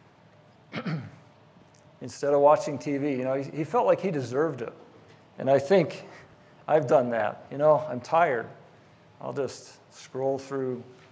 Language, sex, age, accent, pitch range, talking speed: English, male, 50-69, American, 125-150 Hz, 140 wpm